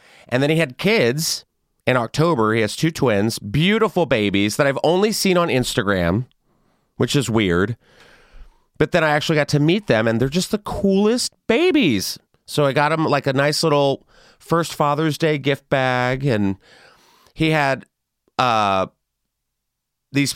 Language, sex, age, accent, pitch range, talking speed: English, male, 30-49, American, 115-150 Hz, 160 wpm